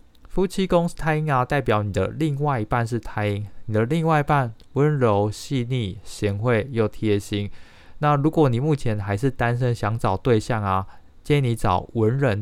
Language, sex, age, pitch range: Chinese, male, 20-39, 100-125 Hz